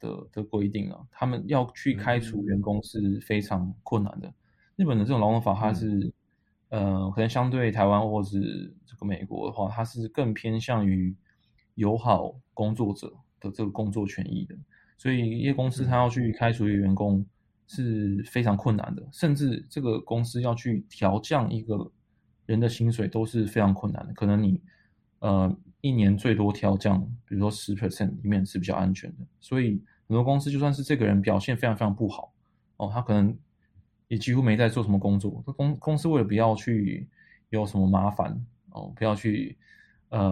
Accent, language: native, Chinese